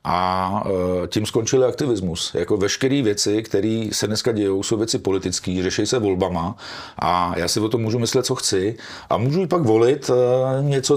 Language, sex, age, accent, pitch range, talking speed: Czech, male, 40-59, native, 95-130 Hz, 175 wpm